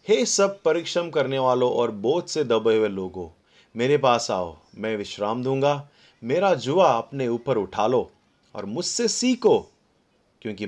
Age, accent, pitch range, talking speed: 30-49, native, 110-170 Hz, 150 wpm